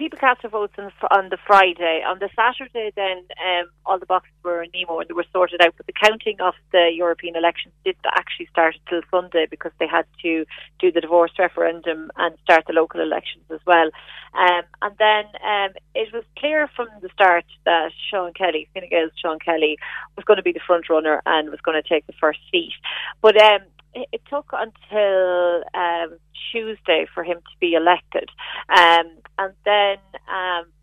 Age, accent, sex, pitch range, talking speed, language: 30-49, Irish, female, 165-205 Hz, 190 wpm, English